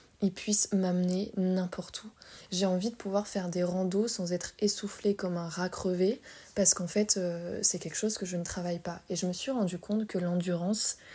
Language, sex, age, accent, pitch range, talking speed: French, female, 20-39, French, 180-210 Hz, 210 wpm